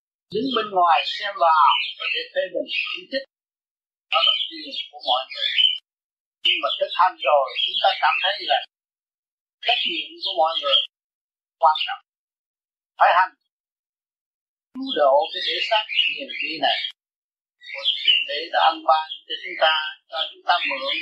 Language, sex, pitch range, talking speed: Vietnamese, male, 230-375 Hz, 170 wpm